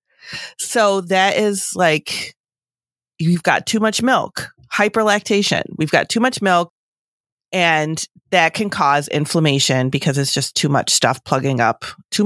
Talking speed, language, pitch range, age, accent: 140 wpm, English, 145-200 Hz, 30-49, American